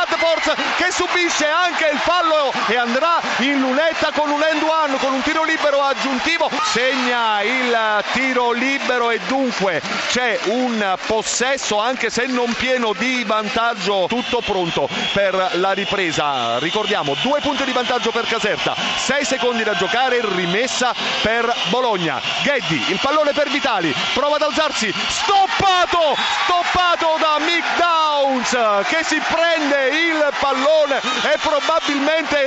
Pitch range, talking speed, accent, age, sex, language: 230-295 Hz, 130 wpm, native, 40-59, male, Italian